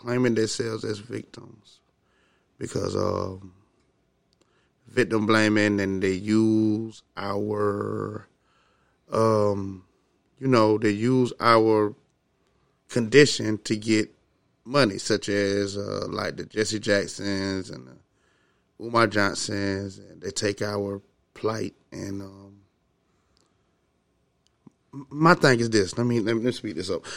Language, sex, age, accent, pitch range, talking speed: English, male, 30-49, American, 105-120 Hz, 115 wpm